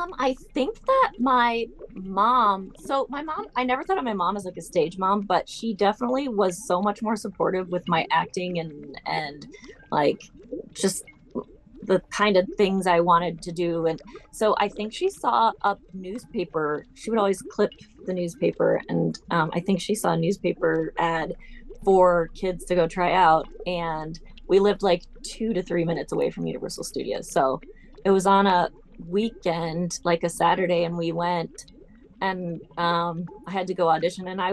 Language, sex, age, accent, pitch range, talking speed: English, female, 20-39, American, 175-230 Hz, 180 wpm